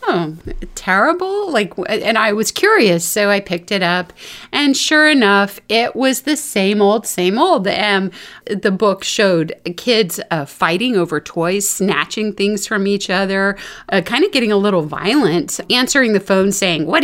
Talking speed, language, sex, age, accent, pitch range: 170 wpm, English, female, 30-49, American, 170-230 Hz